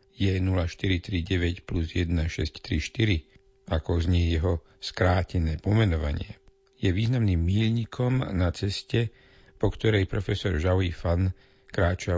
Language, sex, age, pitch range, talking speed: Slovak, male, 60-79, 85-110 Hz, 100 wpm